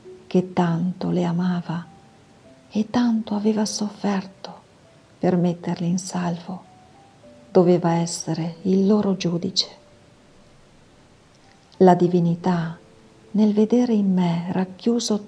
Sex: female